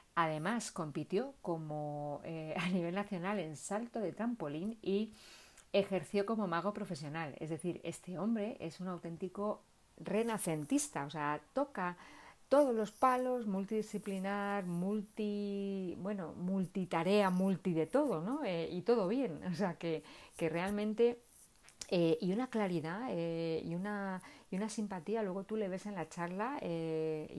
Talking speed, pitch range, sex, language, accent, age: 140 wpm, 160-205 Hz, female, Spanish, Spanish, 40-59